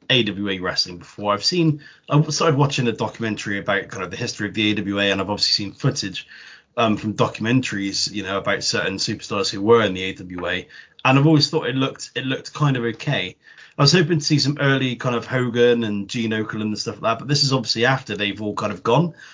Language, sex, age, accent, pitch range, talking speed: English, male, 30-49, British, 105-140 Hz, 230 wpm